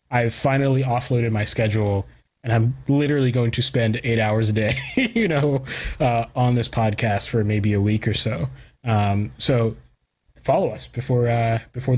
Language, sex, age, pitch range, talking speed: English, male, 20-39, 115-130 Hz, 170 wpm